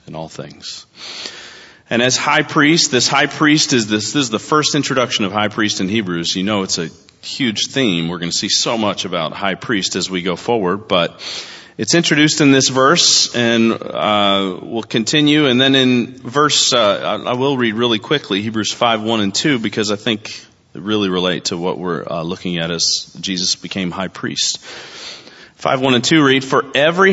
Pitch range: 95-135 Hz